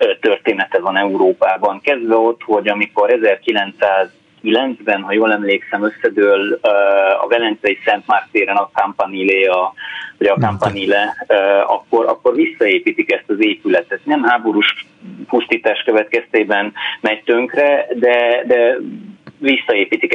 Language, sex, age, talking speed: Hungarian, male, 30-49, 105 wpm